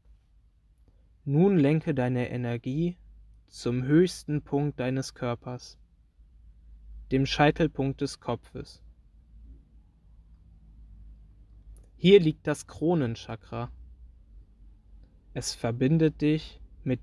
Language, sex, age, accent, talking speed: German, male, 20-39, German, 75 wpm